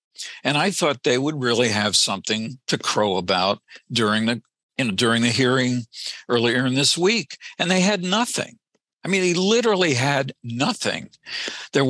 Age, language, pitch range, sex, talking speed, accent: 60-79, English, 110-145 Hz, male, 155 wpm, American